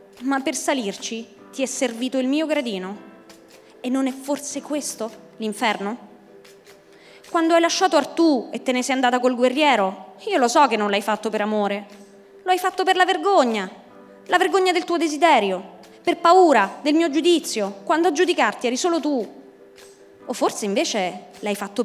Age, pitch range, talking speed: 20-39, 205-320 Hz, 170 wpm